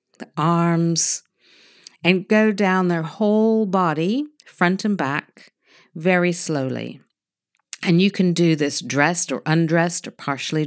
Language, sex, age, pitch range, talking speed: English, female, 50-69, 145-175 Hz, 125 wpm